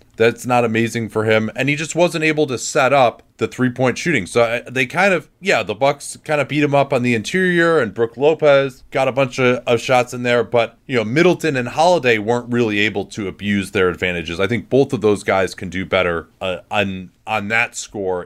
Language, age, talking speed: English, 30-49, 225 wpm